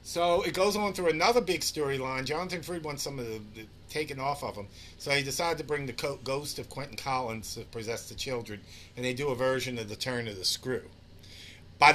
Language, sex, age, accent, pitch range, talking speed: English, male, 50-69, American, 100-135 Hz, 230 wpm